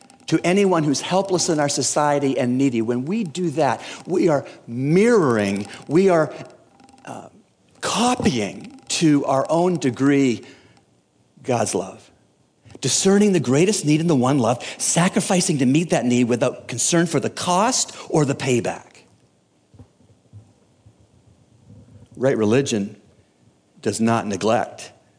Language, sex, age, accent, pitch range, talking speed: English, male, 50-69, American, 110-135 Hz, 125 wpm